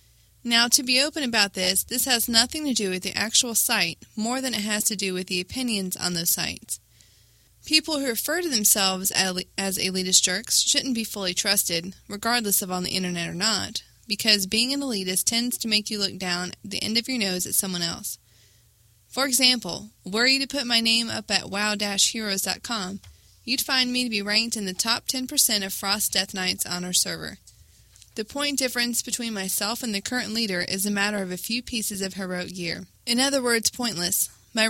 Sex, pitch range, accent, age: female, 185-235 Hz, American, 20-39